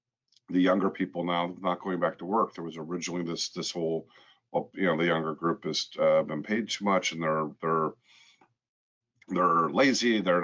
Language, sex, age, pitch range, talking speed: English, male, 50-69, 85-105 Hz, 190 wpm